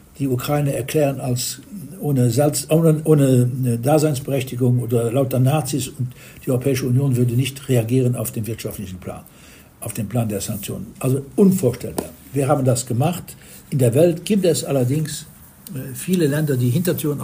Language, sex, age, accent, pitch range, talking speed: German, male, 60-79, German, 125-155 Hz, 145 wpm